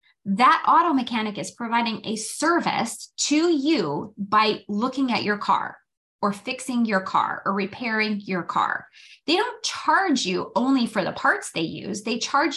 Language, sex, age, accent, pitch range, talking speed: English, female, 20-39, American, 195-275 Hz, 160 wpm